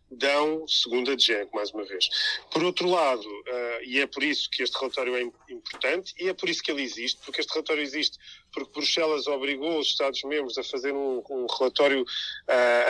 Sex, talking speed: male, 195 wpm